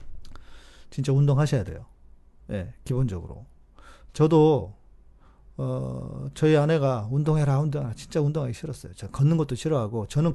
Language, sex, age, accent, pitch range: Korean, male, 40-59, native, 120-165 Hz